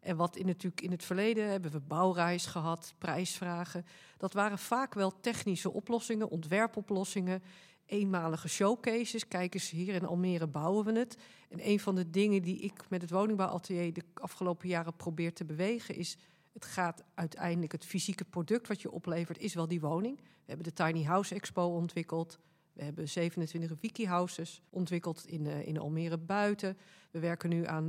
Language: Dutch